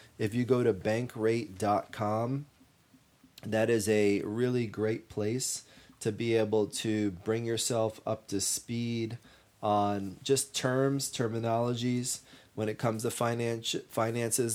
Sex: male